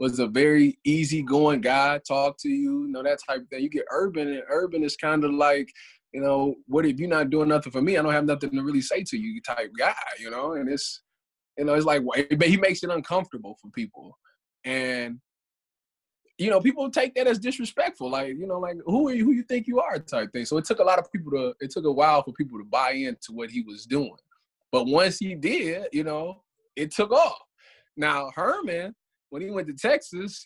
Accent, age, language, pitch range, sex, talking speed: American, 20-39, English, 135-215 Hz, male, 235 wpm